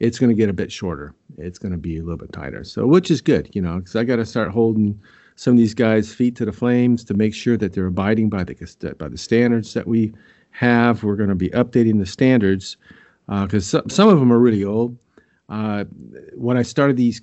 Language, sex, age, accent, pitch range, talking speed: English, male, 50-69, American, 95-120 Hz, 245 wpm